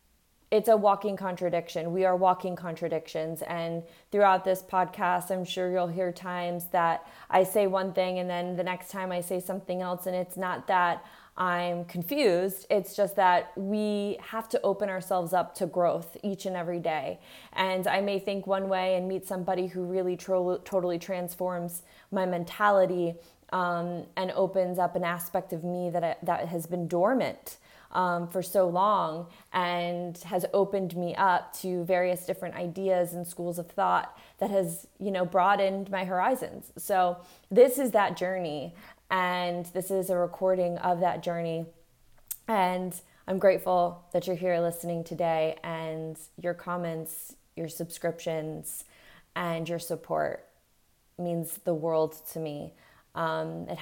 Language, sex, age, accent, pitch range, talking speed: English, female, 20-39, American, 170-185 Hz, 155 wpm